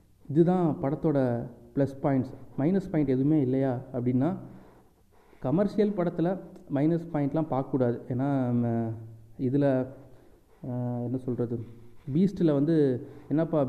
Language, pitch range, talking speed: Tamil, 130-165 Hz, 90 wpm